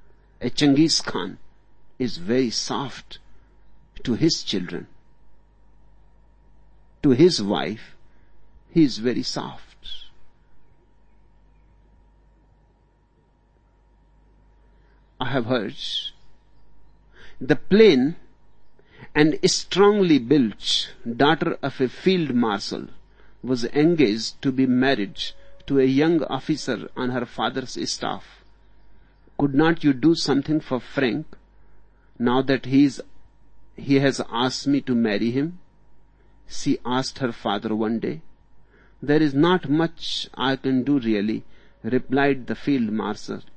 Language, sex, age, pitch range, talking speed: English, male, 60-79, 110-145 Hz, 105 wpm